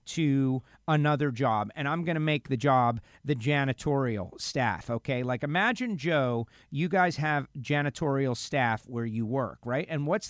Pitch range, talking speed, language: 135-190 Hz, 165 wpm, English